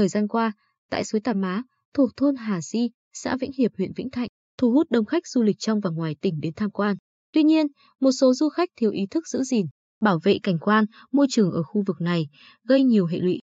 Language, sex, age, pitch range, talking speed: Vietnamese, female, 20-39, 190-255 Hz, 245 wpm